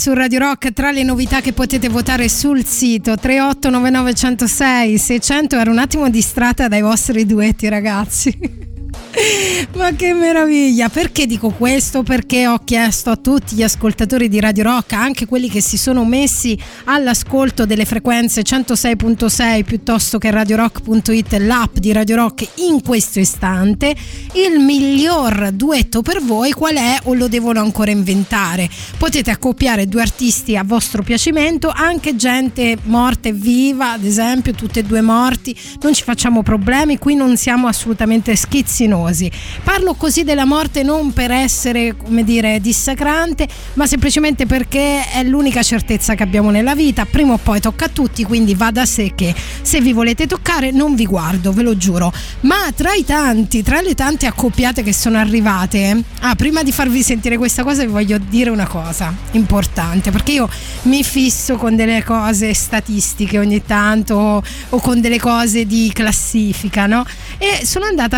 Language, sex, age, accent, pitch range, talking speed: Italian, female, 20-39, native, 220-270 Hz, 160 wpm